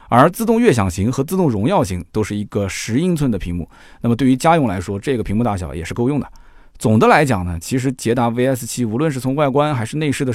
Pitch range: 105-145 Hz